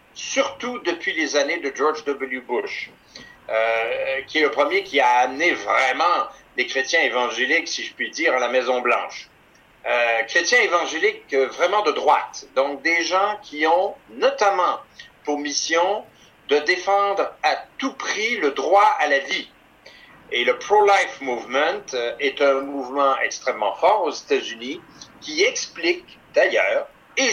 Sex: male